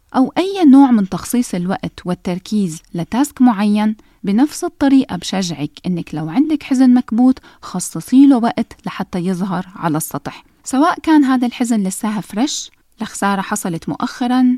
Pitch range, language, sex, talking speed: 185-260 Hz, Arabic, female, 135 wpm